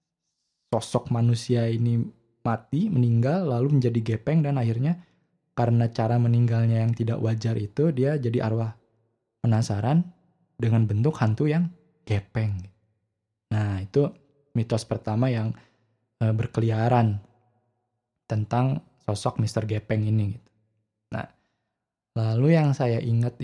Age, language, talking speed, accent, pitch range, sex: 20-39, Indonesian, 115 wpm, native, 115-145 Hz, male